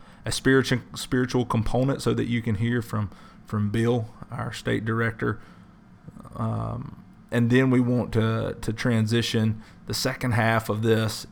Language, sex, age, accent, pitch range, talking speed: English, male, 30-49, American, 110-125 Hz, 150 wpm